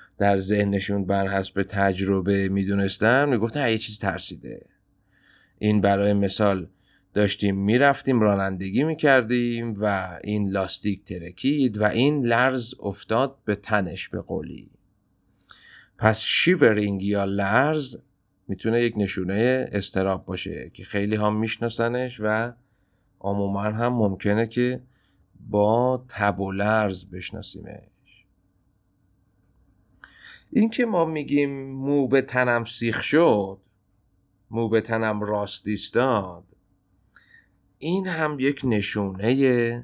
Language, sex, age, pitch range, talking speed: Persian, male, 30-49, 95-120 Hz, 105 wpm